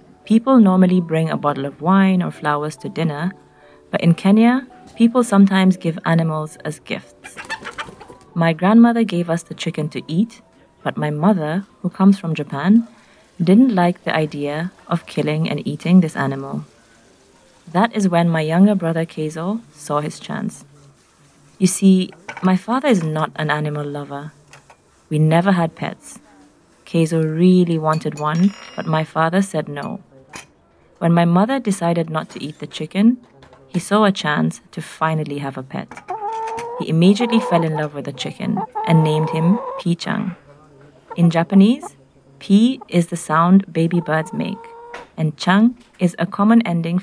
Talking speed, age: 155 wpm, 20-39